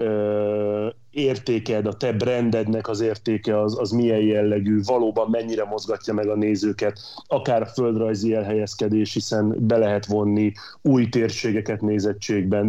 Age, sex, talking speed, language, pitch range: 30-49, male, 125 wpm, Hungarian, 105-115 Hz